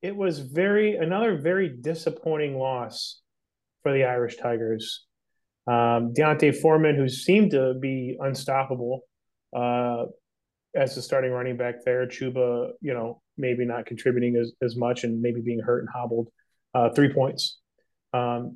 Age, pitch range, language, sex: 30-49, 125-140 Hz, English, male